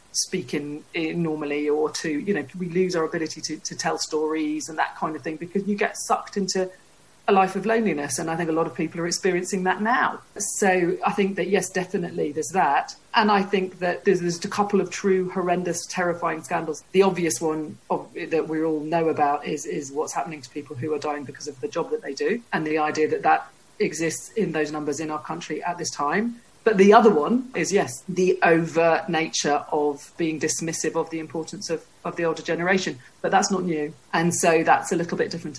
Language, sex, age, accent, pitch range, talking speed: English, female, 40-59, British, 155-185 Hz, 225 wpm